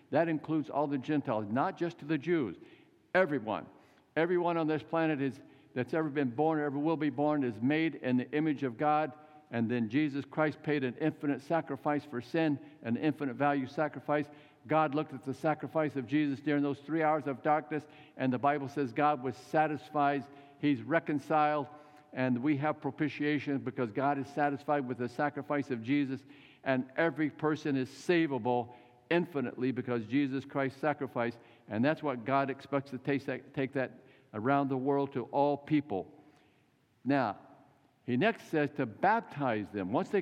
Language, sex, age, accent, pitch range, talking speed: English, male, 50-69, American, 135-155 Hz, 170 wpm